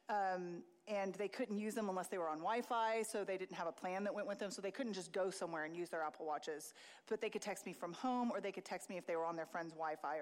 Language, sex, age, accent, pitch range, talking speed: English, female, 30-49, American, 180-225 Hz, 300 wpm